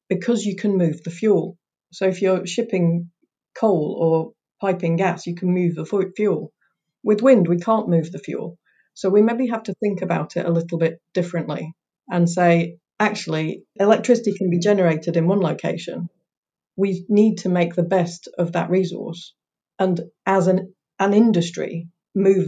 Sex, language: female, English